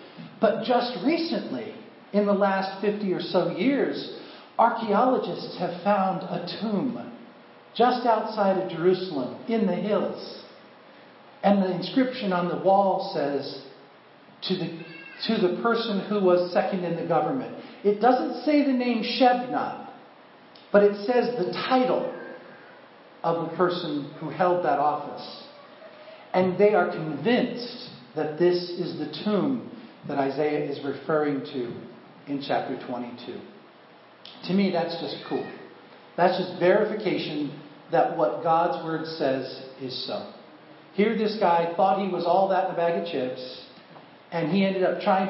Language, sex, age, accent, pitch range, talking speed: English, male, 50-69, American, 165-240 Hz, 140 wpm